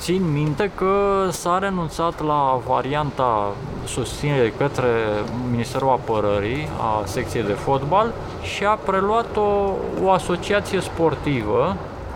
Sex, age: male, 20-39